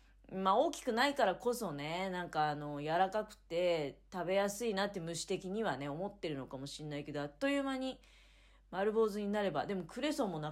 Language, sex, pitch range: Japanese, female, 155-235 Hz